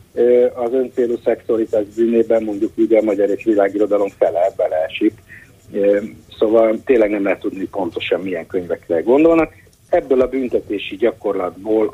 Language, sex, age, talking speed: Hungarian, male, 60-79, 125 wpm